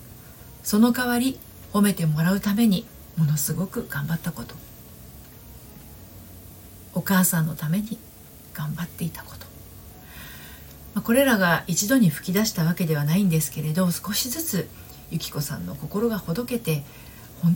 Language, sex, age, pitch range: Japanese, female, 40-59, 145-205 Hz